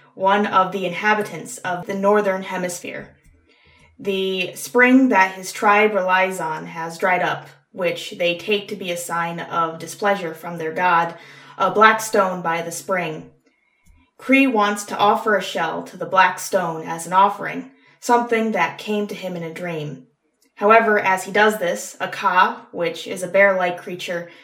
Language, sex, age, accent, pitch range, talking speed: English, female, 20-39, American, 175-215 Hz, 170 wpm